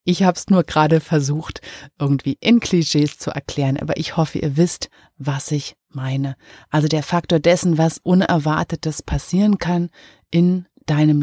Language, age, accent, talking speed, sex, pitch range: German, 30-49, German, 155 wpm, female, 150-180 Hz